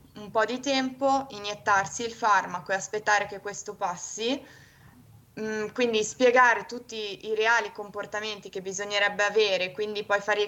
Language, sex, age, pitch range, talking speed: Italian, female, 20-39, 190-220 Hz, 145 wpm